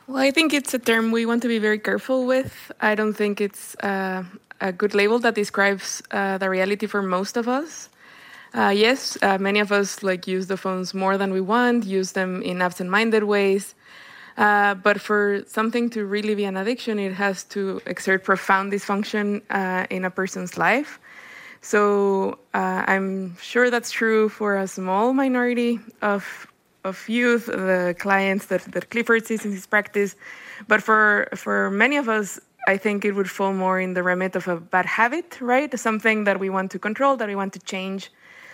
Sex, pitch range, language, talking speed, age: female, 190-220 Hz, English, 190 wpm, 20-39